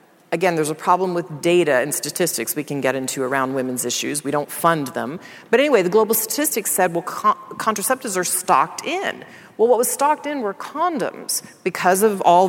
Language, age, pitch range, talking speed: English, 40-59, 145-190 Hz, 190 wpm